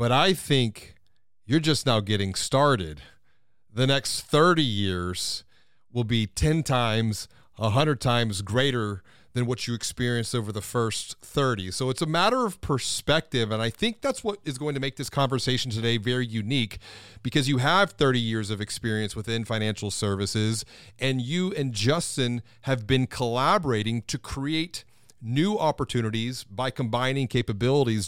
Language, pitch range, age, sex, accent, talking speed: English, 110-140 Hz, 40-59, male, American, 150 wpm